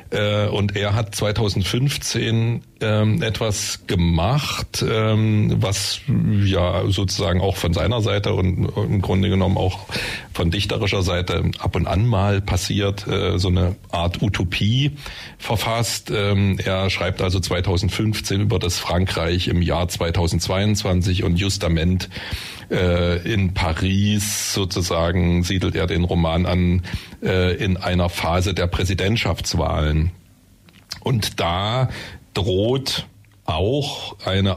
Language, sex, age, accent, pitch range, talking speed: German, male, 40-59, German, 90-105 Hz, 105 wpm